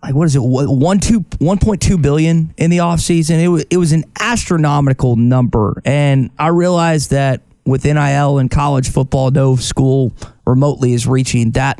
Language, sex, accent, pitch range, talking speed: English, male, American, 125-160 Hz, 175 wpm